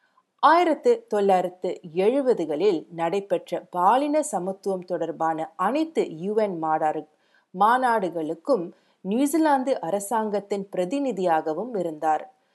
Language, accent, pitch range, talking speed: Tamil, native, 175-255 Hz, 70 wpm